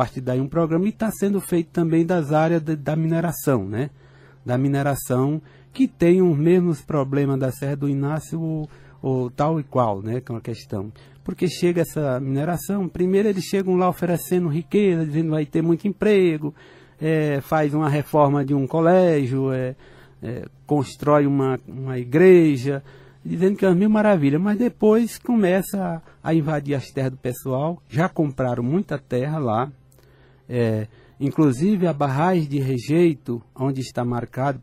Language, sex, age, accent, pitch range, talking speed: Portuguese, male, 60-79, Brazilian, 130-170 Hz, 155 wpm